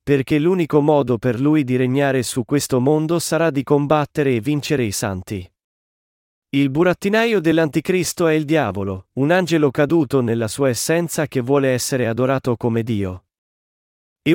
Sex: male